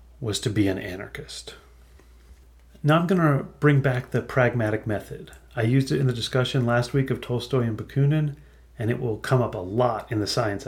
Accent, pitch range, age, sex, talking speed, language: American, 95-130 Hz, 30-49, male, 195 wpm, English